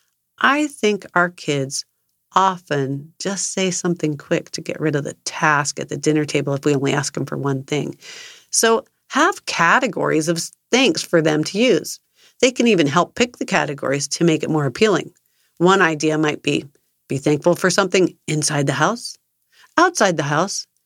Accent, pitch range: American, 155-250 Hz